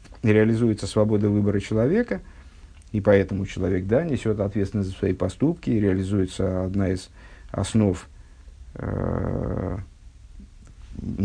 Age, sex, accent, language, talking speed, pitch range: 50-69, male, native, Russian, 95 wpm, 95-115 Hz